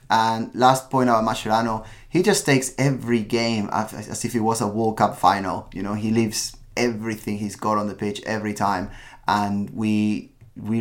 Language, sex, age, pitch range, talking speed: English, male, 20-39, 110-130 Hz, 185 wpm